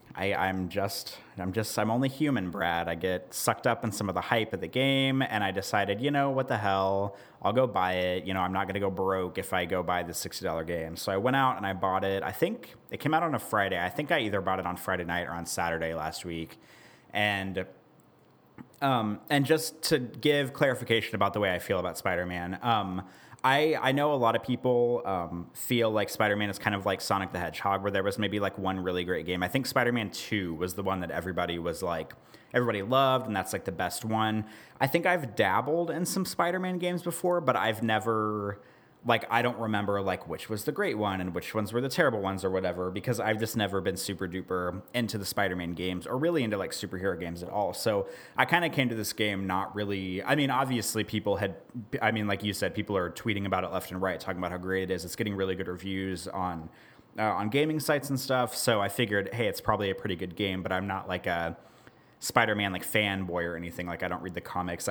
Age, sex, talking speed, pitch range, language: 30-49, male, 240 wpm, 95-120 Hz, English